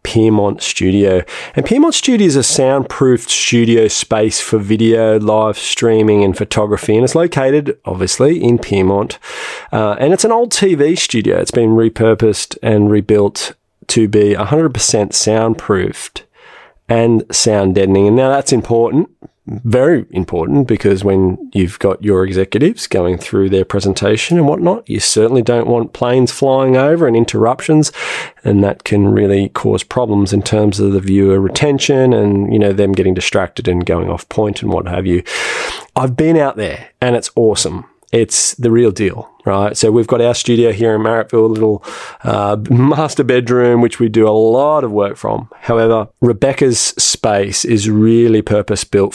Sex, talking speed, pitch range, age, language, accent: male, 165 wpm, 100-125 Hz, 20-39, English, Australian